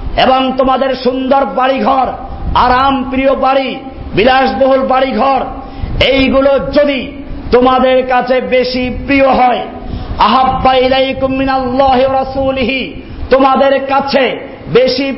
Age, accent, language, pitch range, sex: 50-69, native, Bengali, 210-265 Hz, male